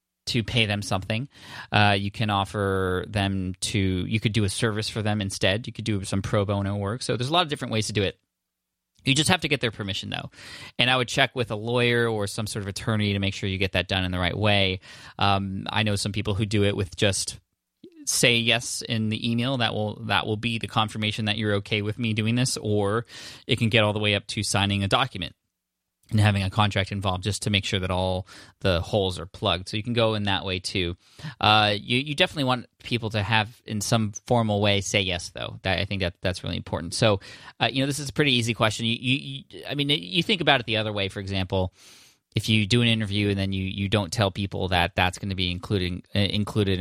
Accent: American